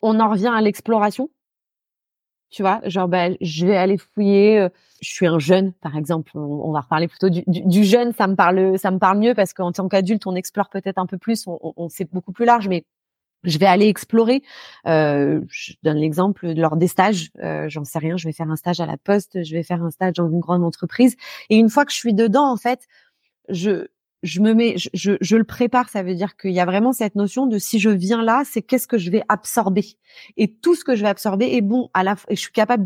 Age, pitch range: 30-49, 185-230 Hz